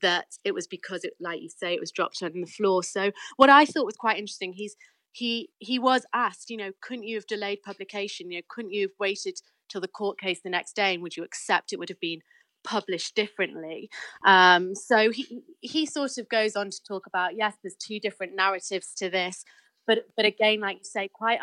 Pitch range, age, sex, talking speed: 175-210 Hz, 30-49, female, 225 wpm